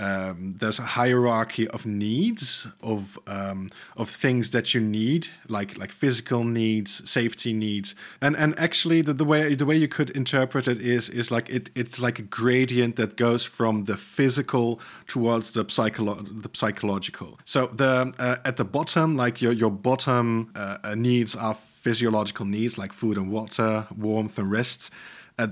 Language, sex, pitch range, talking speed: English, male, 110-125 Hz, 170 wpm